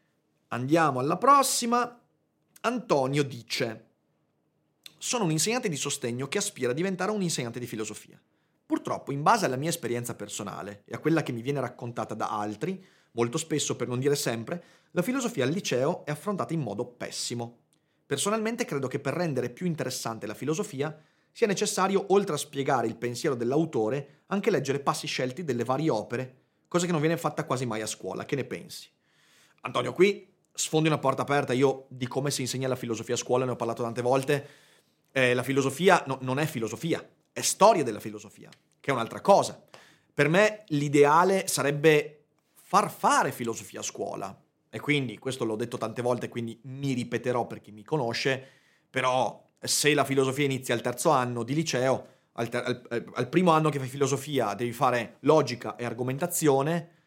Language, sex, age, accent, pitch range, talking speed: Italian, male, 30-49, native, 120-160 Hz, 175 wpm